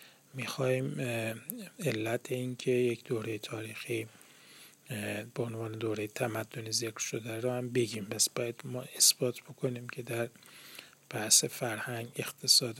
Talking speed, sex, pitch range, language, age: 120 wpm, male, 115-130 Hz, Persian, 30-49